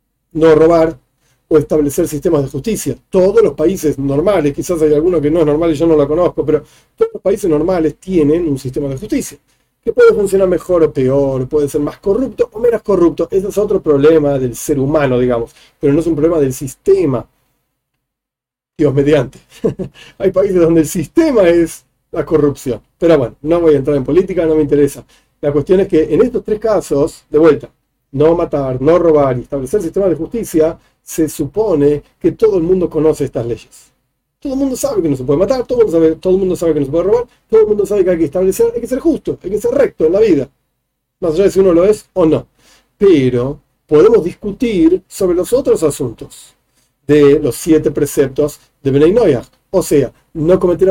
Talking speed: 210 wpm